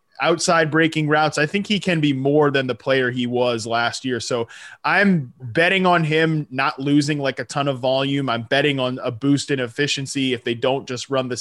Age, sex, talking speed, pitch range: 20-39, male, 215 wpm, 130-155 Hz